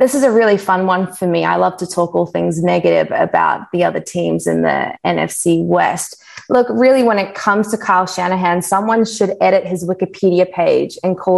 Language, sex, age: English, female, 20-39